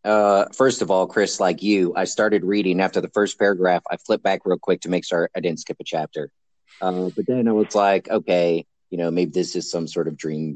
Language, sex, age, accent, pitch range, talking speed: English, male, 30-49, American, 85-105 Hz, 245 wpm